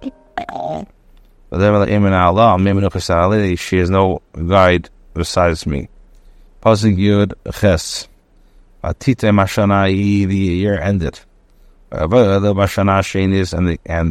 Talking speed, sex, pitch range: 50 wpm, male, 85-100 Hz